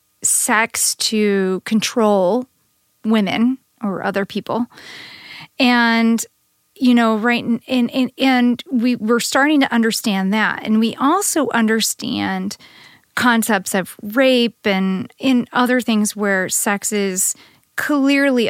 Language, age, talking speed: English, 40-59, 115 wpm